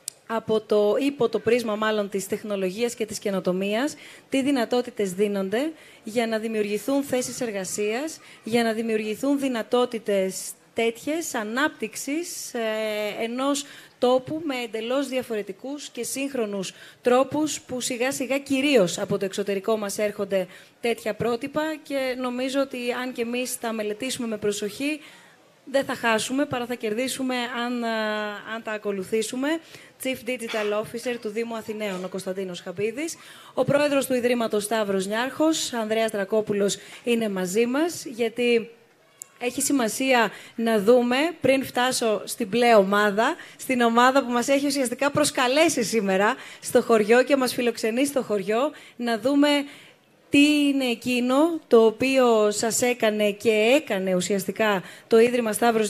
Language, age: Greek, 20-39